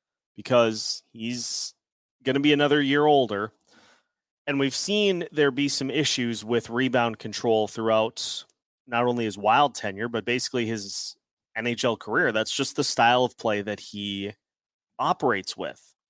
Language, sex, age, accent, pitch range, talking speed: English, male, 30-49, American, 110-140 Hz, 145 wpm